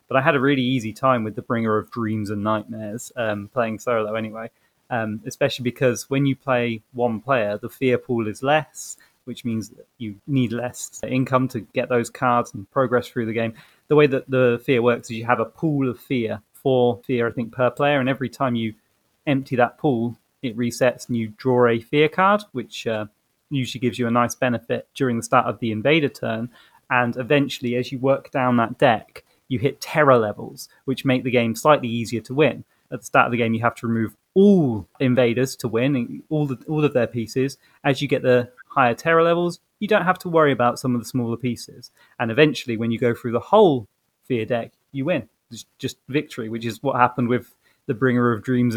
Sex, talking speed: male, 220 wpm